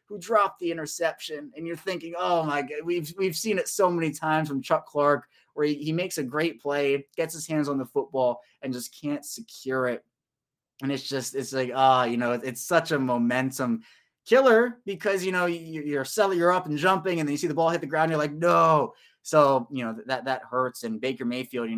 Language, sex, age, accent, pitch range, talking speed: English, male, 20-39, American, 120-155 Hz, 235 wpm